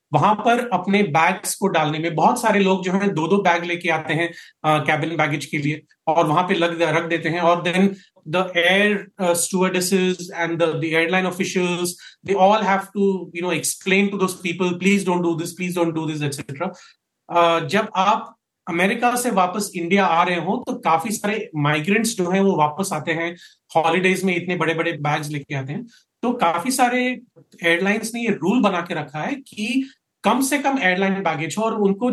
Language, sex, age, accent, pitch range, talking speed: Hindi, male, 30-49, native, 165-200 Hz, 185 wpm